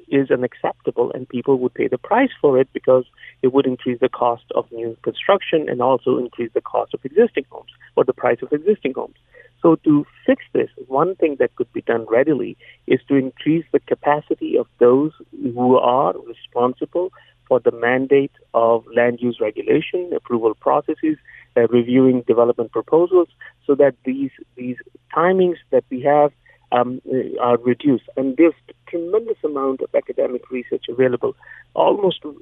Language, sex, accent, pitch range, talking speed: English, male, Indian, 125-200 Hz, 160 wpm